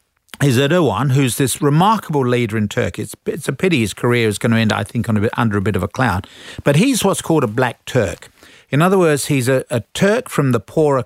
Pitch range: 115-150 Hz